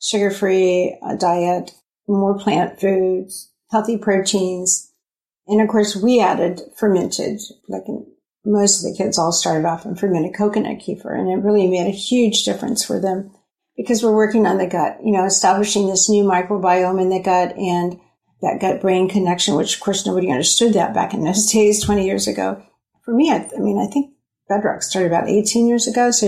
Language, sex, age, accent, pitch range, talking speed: English, female, 50-69, American, 190-230 Hz, 190 wpm